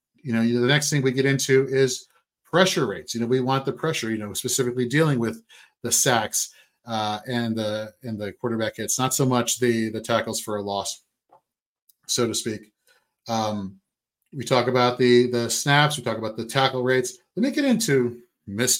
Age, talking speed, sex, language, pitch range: 40-59, 195 wpm, male, English, 115-135 Hz